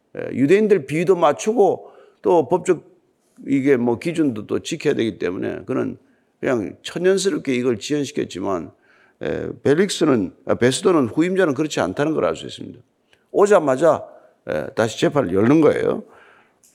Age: 50-69